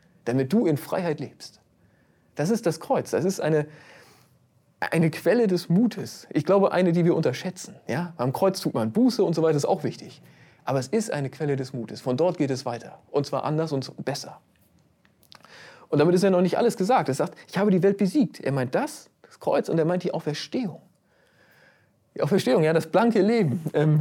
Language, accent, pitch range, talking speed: German, German, 145-195 Hz, 205 wpm